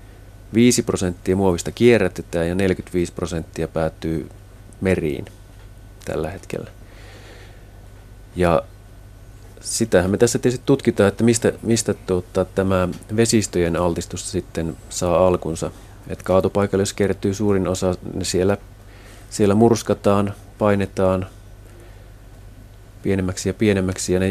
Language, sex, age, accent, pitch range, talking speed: Finnish, male, 30-49, native, 90-100 Hz, 105 wpm